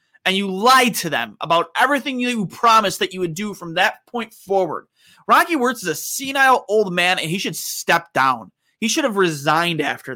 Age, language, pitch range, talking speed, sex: 30-49, English, 170-230 Hz, 200 wpm, male